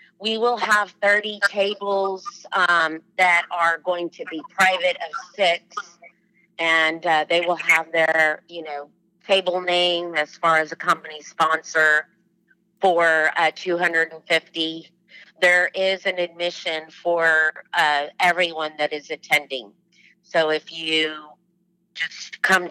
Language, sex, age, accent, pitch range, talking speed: English, female, 30-49, American, 155-180 Hz, 135 wpm